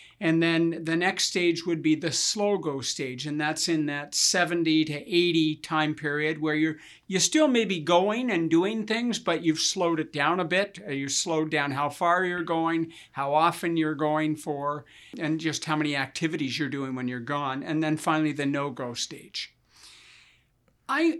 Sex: male